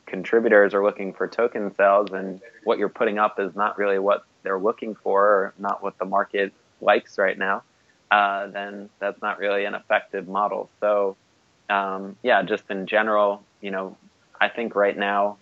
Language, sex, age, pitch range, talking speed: English, male, 20-39, 95-100 Hz, 175 wpm